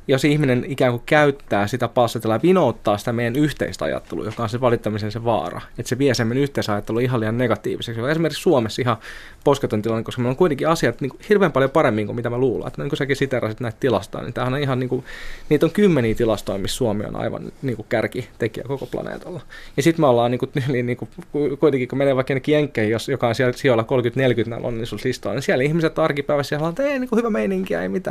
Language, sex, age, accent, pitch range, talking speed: Finnish, male, 20-39, native, 120-150 Hz, 220 wpm